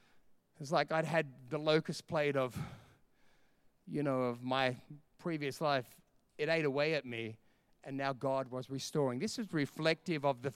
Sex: male